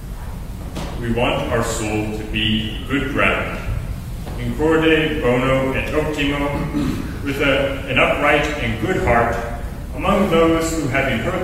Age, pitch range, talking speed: 40-59, 115-150 Hz, 125 wpm